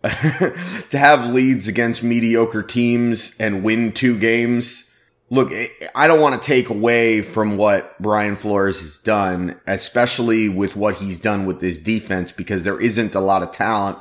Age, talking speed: 30-49, 165 wpm